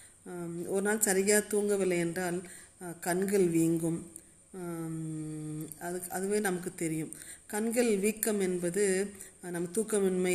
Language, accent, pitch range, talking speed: Tamil, native, 165-195 Hz, 95 wpm